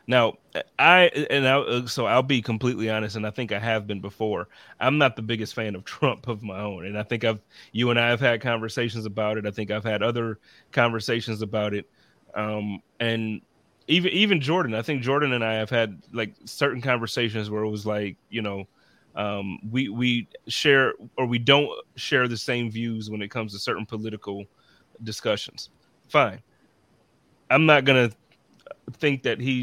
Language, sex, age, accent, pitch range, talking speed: English, male, 30-49, American, 110-140 Hz, 190 wpm